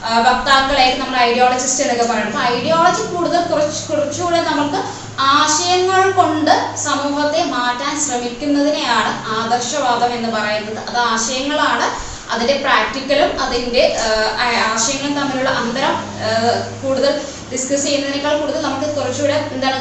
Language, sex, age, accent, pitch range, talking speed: Malayalam, female, 20-39, native, 240-295 Hz, 105 wpm